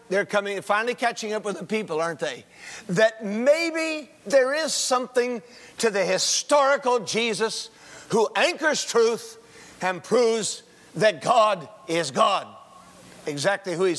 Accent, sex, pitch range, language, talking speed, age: American, male, 175-245 Hz, English, 135 wpm, 50-69